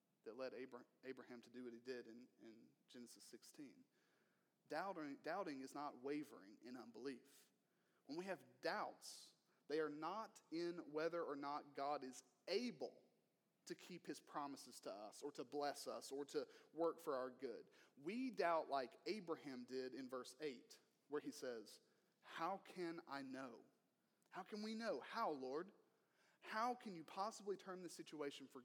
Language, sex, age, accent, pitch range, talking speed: English, male, 30-49, American, 145-220 Hz, 165 wpm